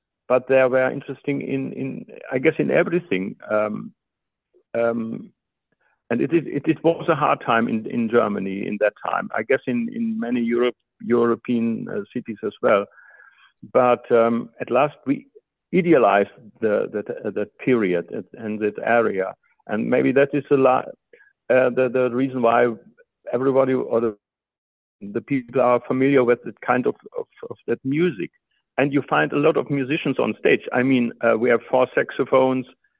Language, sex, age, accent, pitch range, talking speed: English, male, 60-79, German, 120-145 Hz, 165 wpm